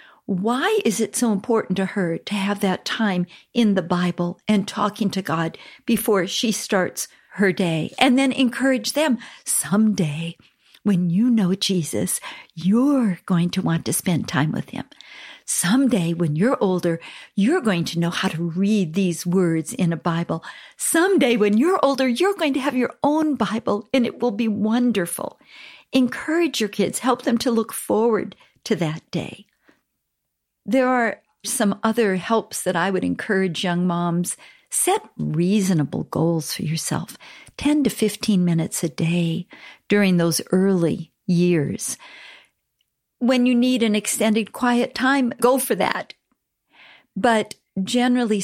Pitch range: 175-240 Hz